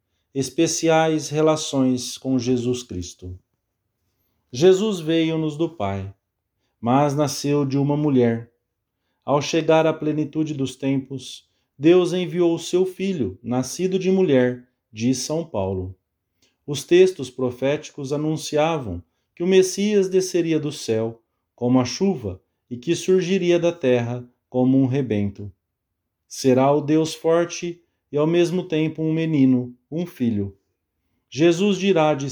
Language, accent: English, Brazilian